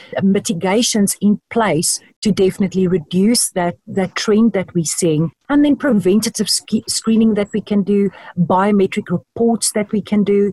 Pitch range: 180-220 Hz